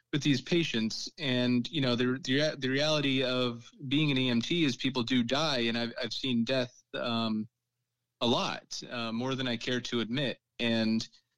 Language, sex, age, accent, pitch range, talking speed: English, male, 30-49, American, 115-130 Hz, 180 wpm